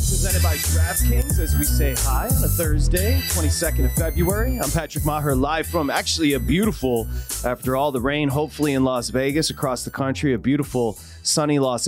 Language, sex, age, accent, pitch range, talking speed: English, male, 30-49, American, 115-150 Hz, 180 wpm